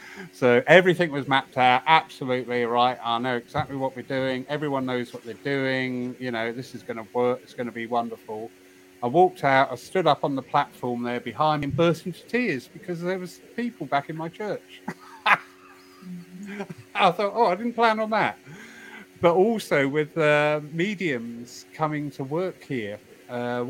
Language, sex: English, male